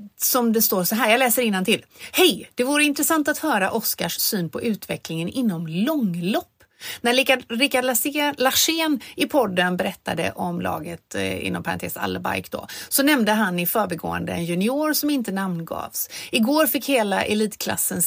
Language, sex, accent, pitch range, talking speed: Swedish, female, native, 175-245 Hz, 165 wpm